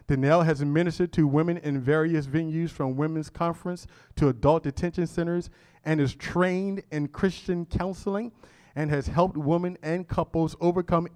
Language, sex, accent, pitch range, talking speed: English, male, American, 135-170 Hz, 150 wpm